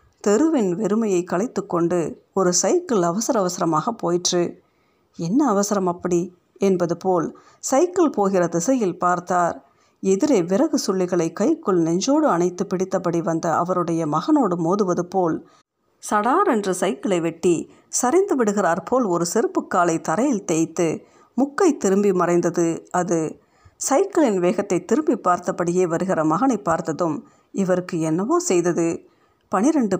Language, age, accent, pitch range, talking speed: Tamil, 50-69, native, 175-240 Hz, 100 wpm